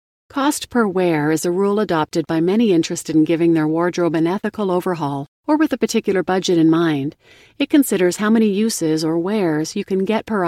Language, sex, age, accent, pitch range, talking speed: English, female, 40-59, American, 170-225 Hz, 200 wpm